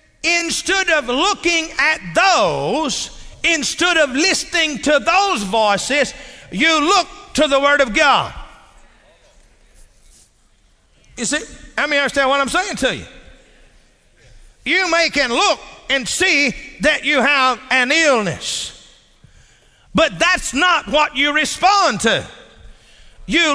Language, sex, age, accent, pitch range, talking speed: English, male, 50-69, American, 265-335 Hz, 120 wpm